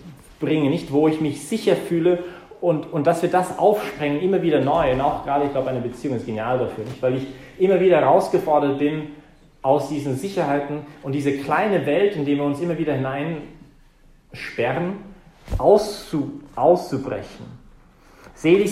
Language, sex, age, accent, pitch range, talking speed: English, male, 40-59, German, 130-160 Hz, 160 wpm